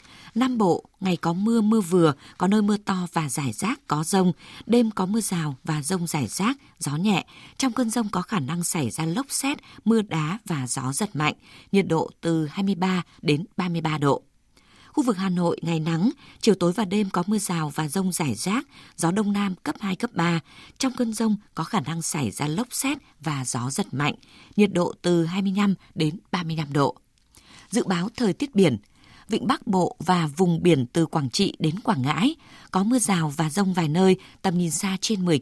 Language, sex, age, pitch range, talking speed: Vietnamese, female, 20-39, 160-210 Hz, 210 wpm